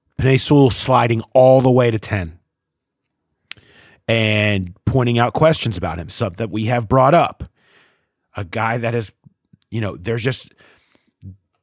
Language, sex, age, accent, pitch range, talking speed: English, male, 30-49, American, 105-135 Hz, 140 wpm